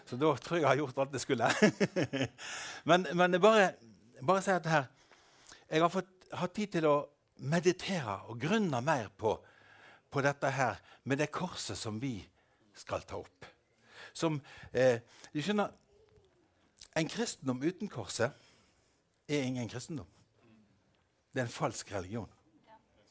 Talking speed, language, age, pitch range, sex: 145 wpm, English, 60-79, 115-175 Hz, male